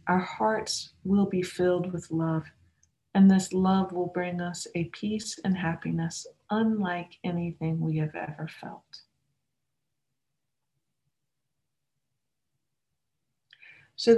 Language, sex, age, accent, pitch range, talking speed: English, female, 50-69, American, 170-220 Hz, 100 wpm